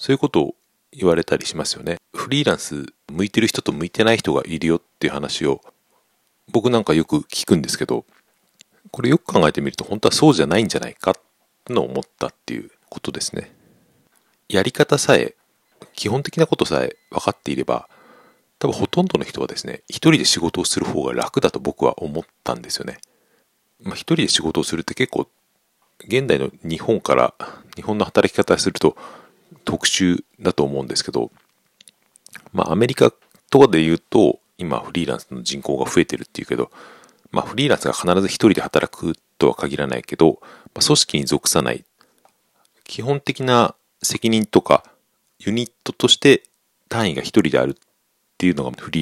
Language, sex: Japanese, male